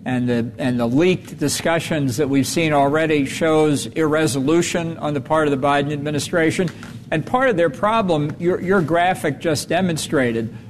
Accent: American